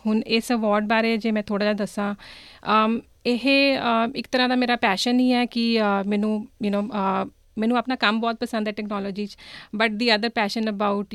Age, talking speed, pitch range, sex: 40-59, 185 wpm, 205-230 Hz, female